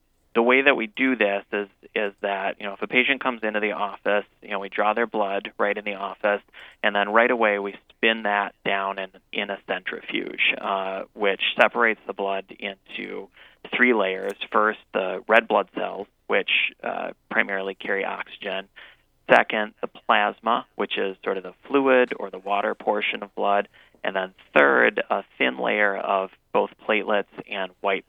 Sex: male